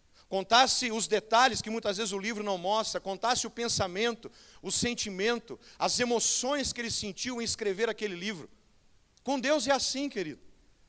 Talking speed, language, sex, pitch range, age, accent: 160 wpm, Portuguese, male, 215-255 Hz, 40-59, Brazilian